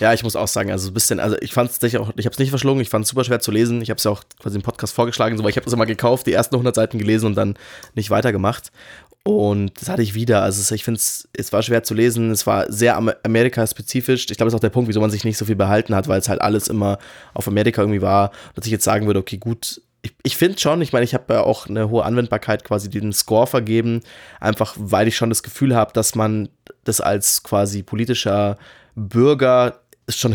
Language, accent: German, German